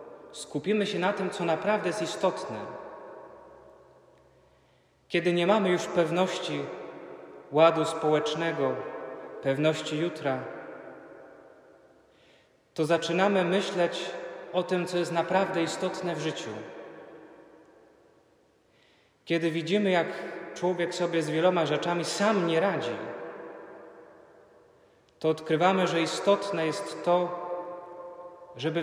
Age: 30-49